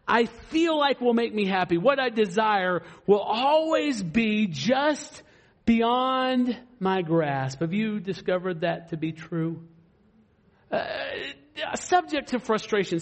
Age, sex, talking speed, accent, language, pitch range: 50-69, male, 130 wpm, American, English, 190-305 Hz